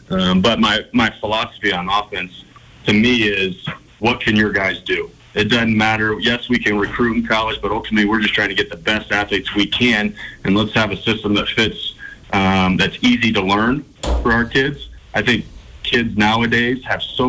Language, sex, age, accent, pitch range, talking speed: English, male, 30-49, American, 100-115 Hz, 200 wpm